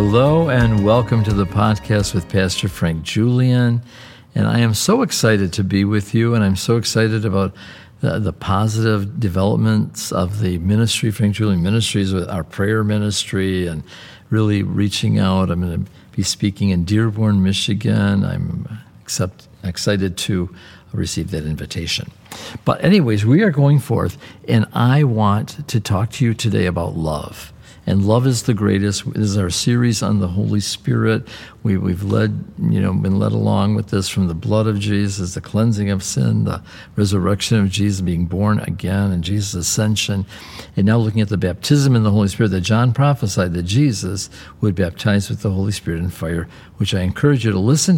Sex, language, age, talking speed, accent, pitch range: male, English, 50-69, 180 wpm, American, 95-115 Hz